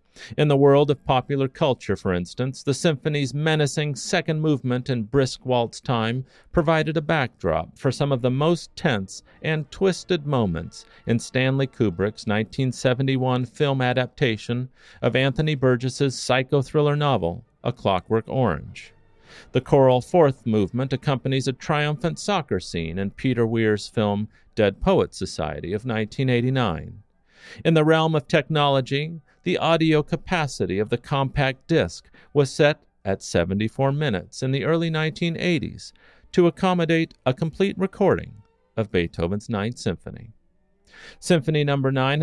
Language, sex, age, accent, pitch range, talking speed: English, male, 40-59, American, 115-155 Hz, 135 wpm